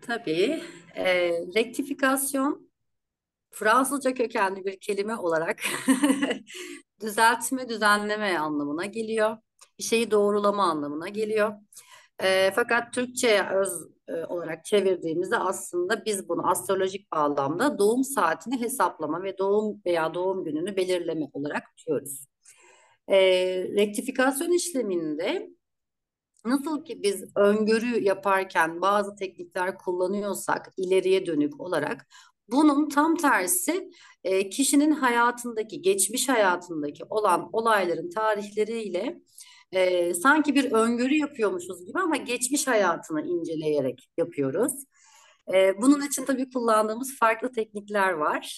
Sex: female